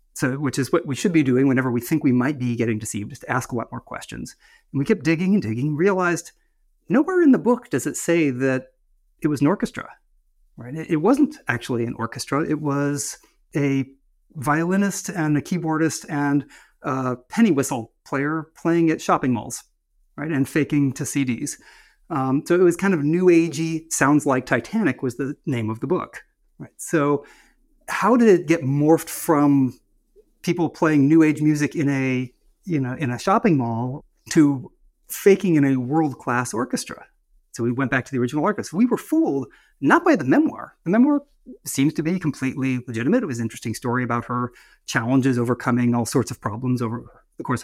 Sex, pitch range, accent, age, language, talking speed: male, 125-165 Hz, American, 30-49, English, 190 wpm